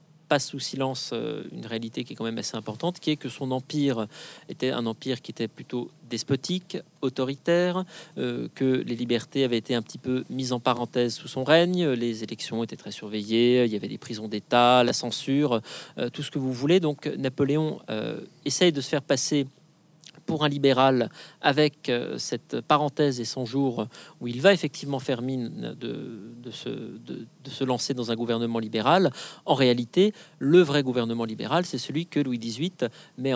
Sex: male